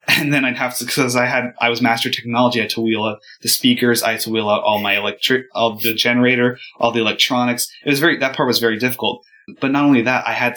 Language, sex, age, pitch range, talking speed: English, male, 20-39, 110-125 Hz, 265 wpm